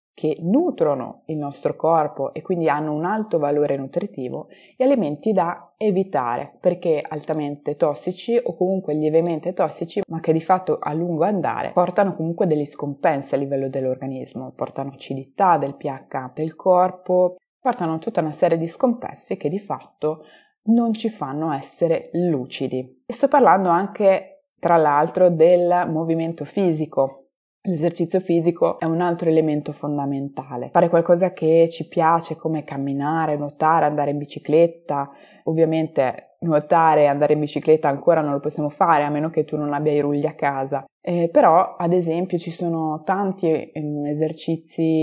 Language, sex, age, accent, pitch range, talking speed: Italian, female, 20-39, native, 145-175 Hz, 150 wpm